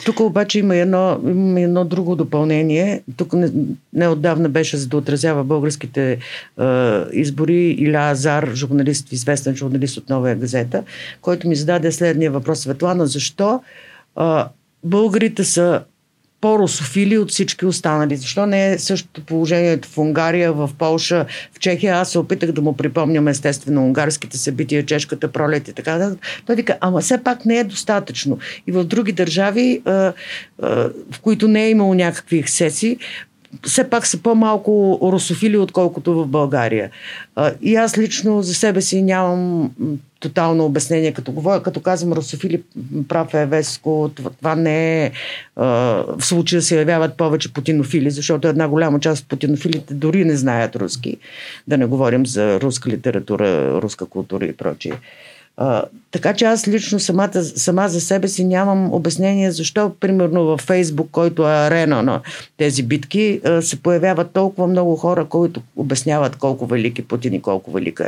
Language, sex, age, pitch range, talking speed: Bulgarian, female, 50-69, 145-185 Hz, 155 wpm